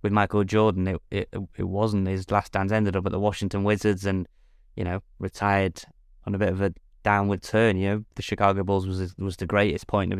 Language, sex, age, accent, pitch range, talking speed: English, male, 20-39, British, 95-105 Hz, 225 wpm